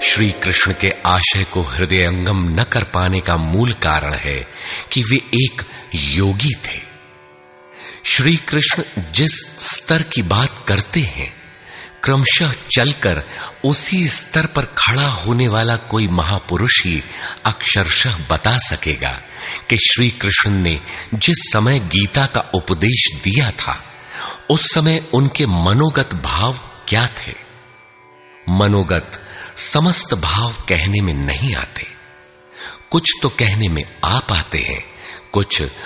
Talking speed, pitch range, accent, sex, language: 120 wpm, 90-130 Hz, native, male, Hindi